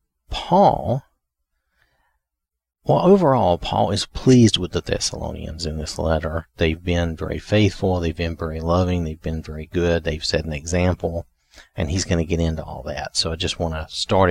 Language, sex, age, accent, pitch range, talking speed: English, male, 40-59, American, 80-105 Hz, 175 wpm